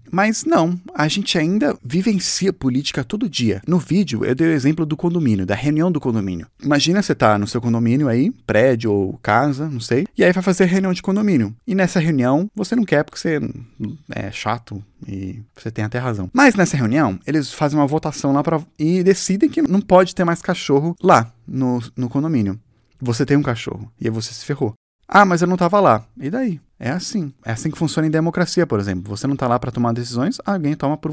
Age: 20-39